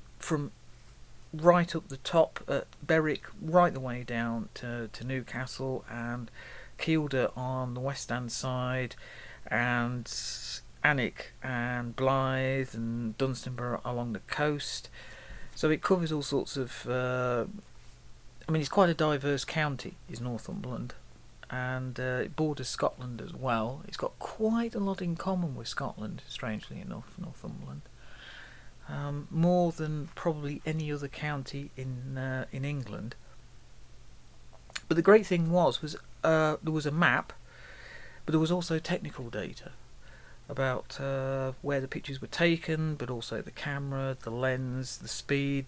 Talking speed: 140 wpm